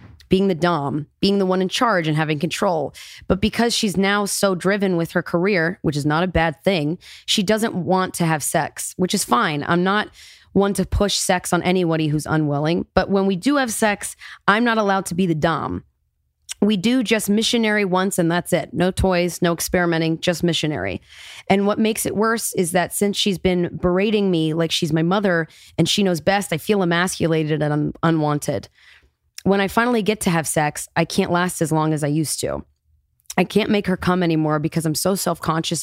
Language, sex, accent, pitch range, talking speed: English, female, American, 160-195 Hz, 210 wpm